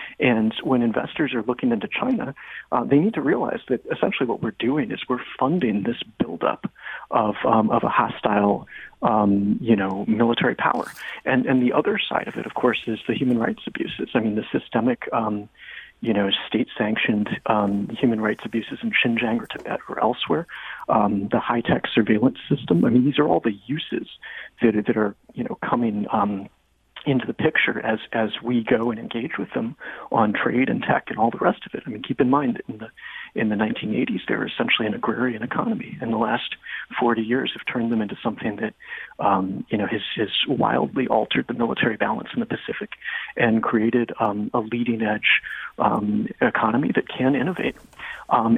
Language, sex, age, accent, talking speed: English, male, 40-59, American, 195 wpm